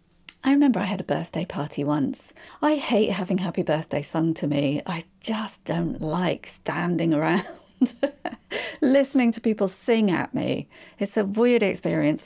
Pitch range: 165-235 Hz